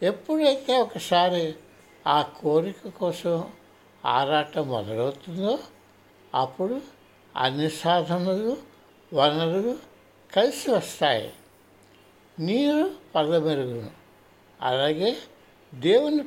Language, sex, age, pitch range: Telugu, male, 60-79, 140-210 Hz